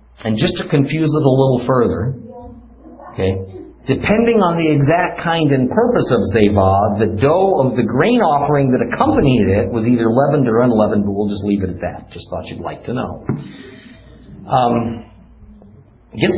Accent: American